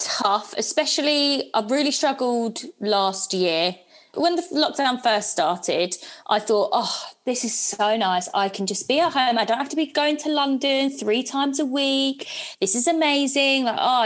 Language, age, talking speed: English, 20-39, 180 wpm